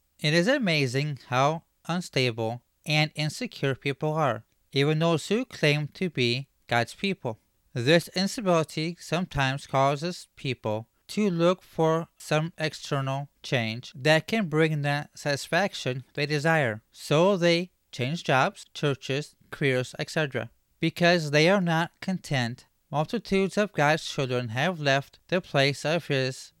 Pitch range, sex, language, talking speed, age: 130-170 Hz, male, English, 130 wpm, 30-49